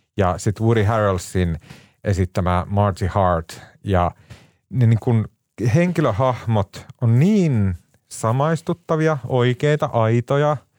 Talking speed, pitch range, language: 90 wpm, 100-135 Hz, Finnish